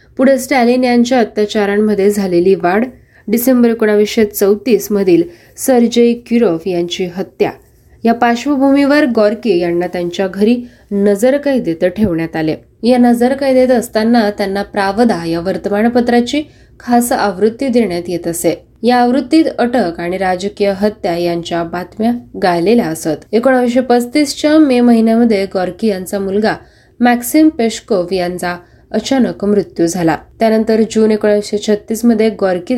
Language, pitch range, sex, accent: Marathi, 190-245 Hz, female, native